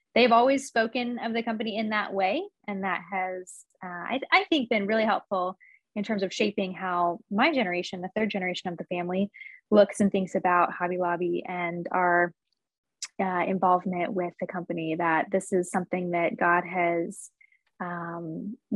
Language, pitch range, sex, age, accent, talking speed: English, 180-220 Hz, female, 20-39, American, 170 wpm